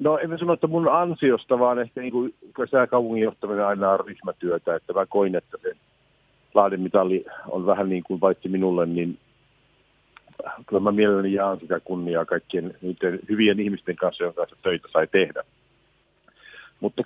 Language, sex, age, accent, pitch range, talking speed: Finnish, male, 50-69, native, 95-135 Hz, 150 wpm